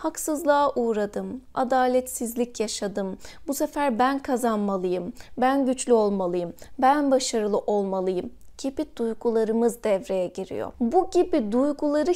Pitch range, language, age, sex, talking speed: 230-295 Hz, Turkish, 30-49, female, 105 wpm